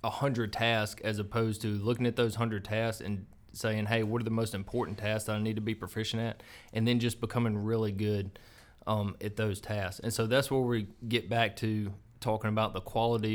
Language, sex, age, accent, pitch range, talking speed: English, male, 20-39, American, 105-115 Hz, 220 wpm